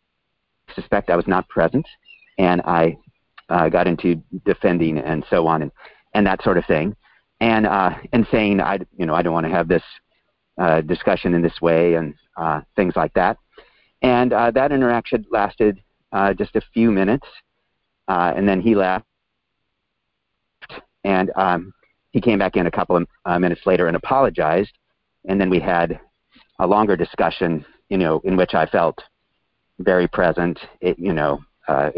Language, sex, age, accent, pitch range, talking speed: English, male, 50-69, American, 85-110 Hz, 170 wpm